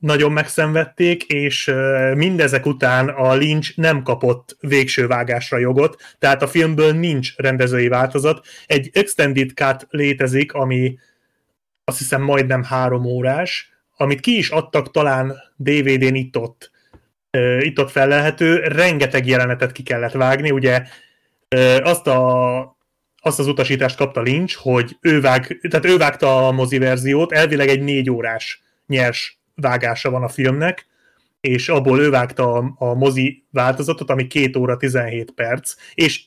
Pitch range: 130-150 Hz